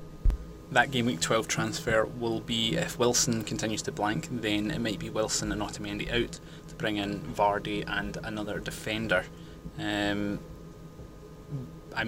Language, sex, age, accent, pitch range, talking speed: English, male, 10-29, British, 105-120 Hz, 145 wpm